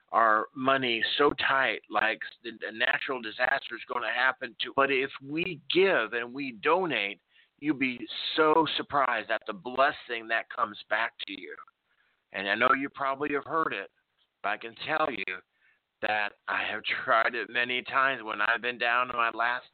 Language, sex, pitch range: English, male, 115-145 Hz